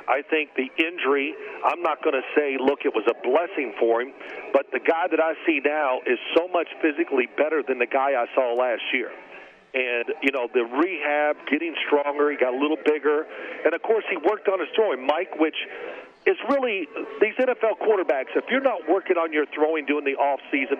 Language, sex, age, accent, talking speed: English, male, 50-69, American, 210 wpm